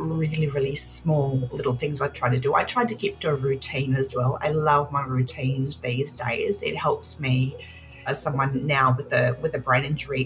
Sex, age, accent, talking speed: female, 30-49, Australian, 210 wpm